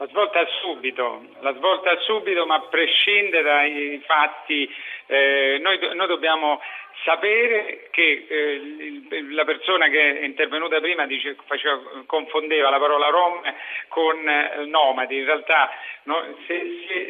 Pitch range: 145-205 Hz